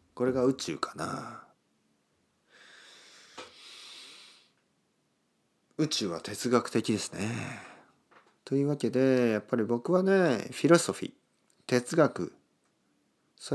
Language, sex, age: Japanese, male, 40-59